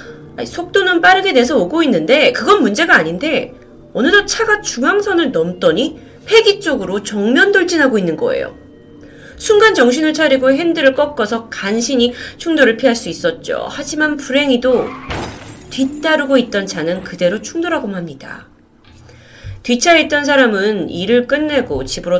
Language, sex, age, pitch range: Korean, female, 30-49, 190-295 Hz